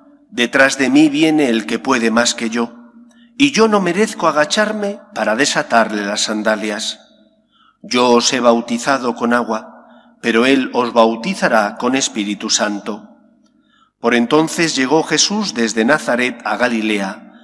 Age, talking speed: 40-59, 140 wpm